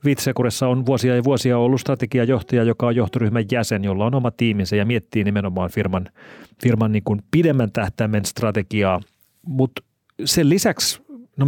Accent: native